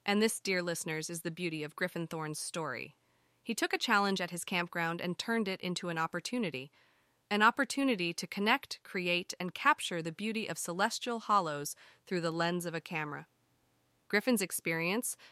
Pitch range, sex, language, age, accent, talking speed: 180-240 Hz, female, English, 30-49, American, 170 wpm